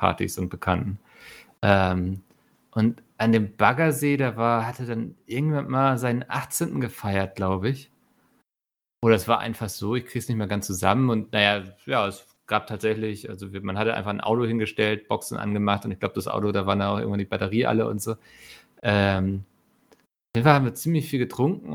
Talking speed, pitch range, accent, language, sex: 190 wpm, 100-125 Hz, German, German, male